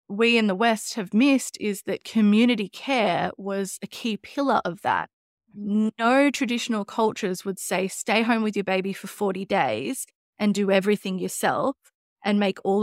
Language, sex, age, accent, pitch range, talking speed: English, female, 20-39, Australian, 195-235 Hz, 170 wpm